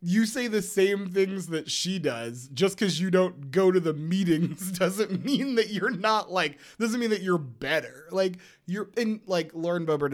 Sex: male